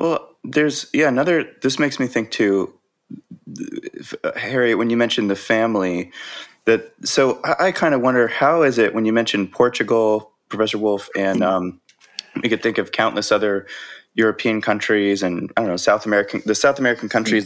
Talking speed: 175 wpm